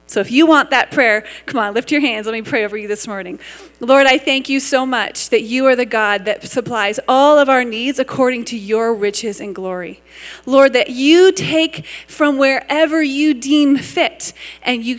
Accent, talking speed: American, 210 wpm